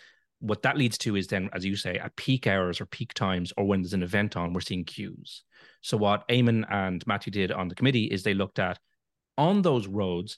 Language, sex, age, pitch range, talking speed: English, male, 30-49, 95-115 Hz, 230 wpm